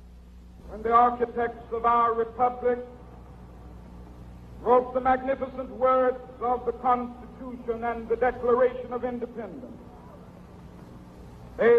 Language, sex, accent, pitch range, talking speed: English, male, American, 190-245 Hz, 95 wpm